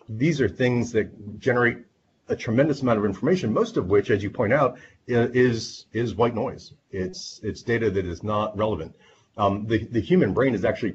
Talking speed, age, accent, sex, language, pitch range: 190 wpm, 40-59, American, male, English, 100-125 Hz